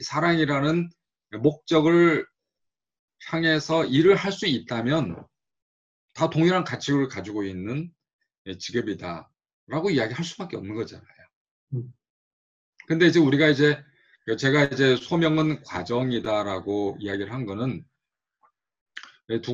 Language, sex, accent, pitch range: Korean, male, native, 115-160 Hz